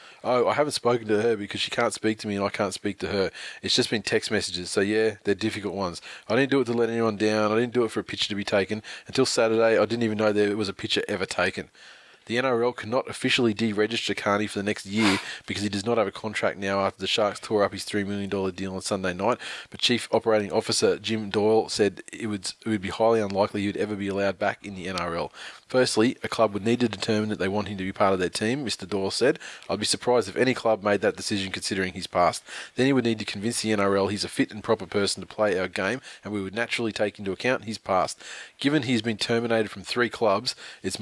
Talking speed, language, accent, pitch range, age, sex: 260 wpm, English, Australian, 100-115 Hz, 20-39, male